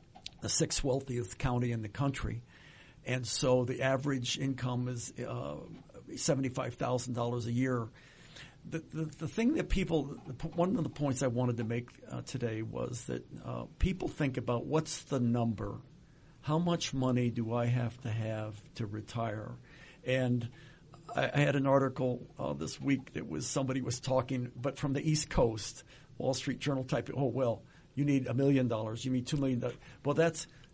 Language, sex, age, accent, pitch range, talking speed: English, male, 50-69, American, 120-145 Hz, 175 wpm